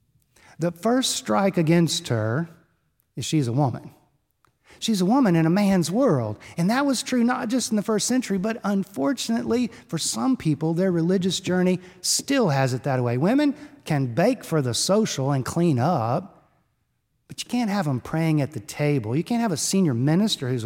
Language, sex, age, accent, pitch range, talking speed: English, male, 50-69, American, 145-210 Hz, 185 wpm